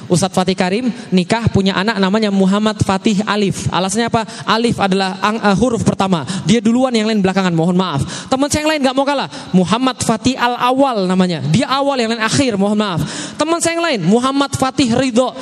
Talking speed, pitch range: 195 wpm, 185-255 Hz